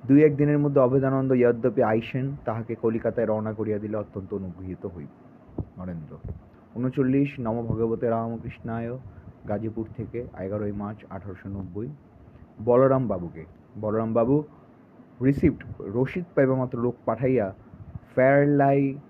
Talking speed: 105 wpm